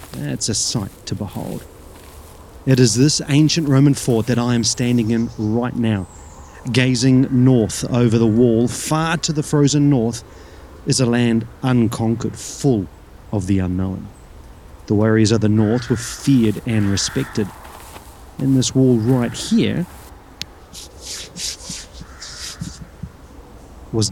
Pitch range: 95-125 Hz